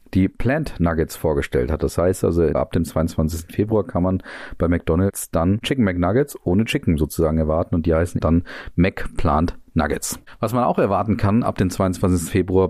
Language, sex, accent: German, male, German